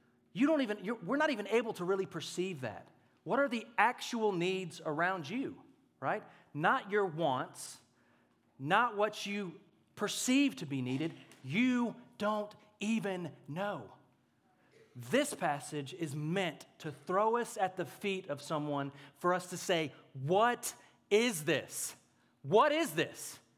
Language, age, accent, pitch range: English, 30-49, American, 140-205 Hz